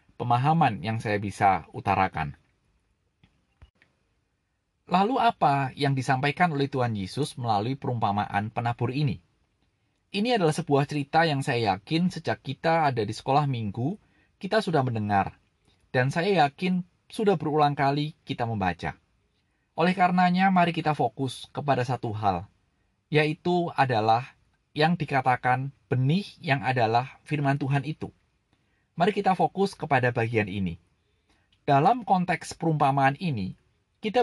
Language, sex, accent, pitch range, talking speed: Indonesian, male, native, 110-160 Hz, 120 wpm